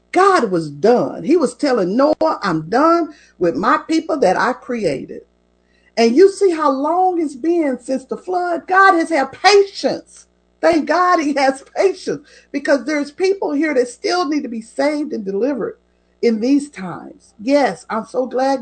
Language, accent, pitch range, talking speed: English, American, 190-315 Hz, 170 wpm